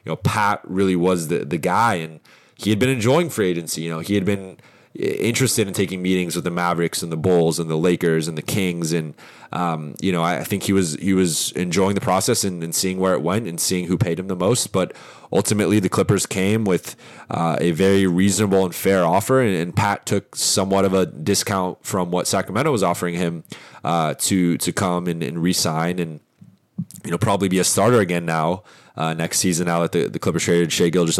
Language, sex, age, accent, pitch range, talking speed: English, male, 20-39, American, 85-100 Hz, 225 wpm